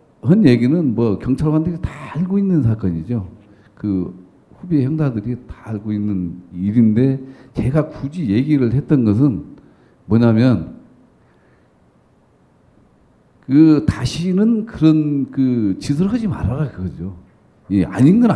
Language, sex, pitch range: Korean, male, 110-160 Hz